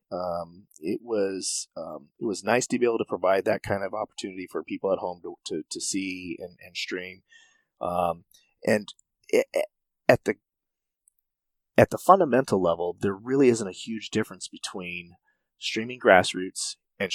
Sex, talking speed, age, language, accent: male, 160 wpm, 30-49, English, American